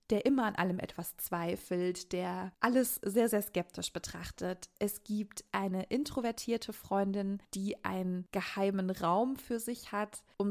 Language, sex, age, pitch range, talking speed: German, female, 20-39, 185-220 Hz, 145 wpm